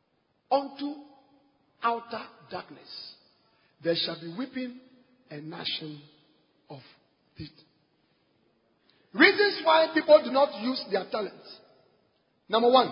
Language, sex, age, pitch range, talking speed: English, male, 40-59, 195-290 Hz, 100 wpm